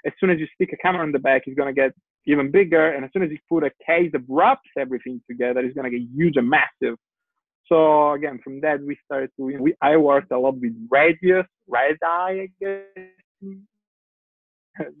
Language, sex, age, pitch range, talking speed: English, male, 20-39, 140-180 Hz, 200 wpm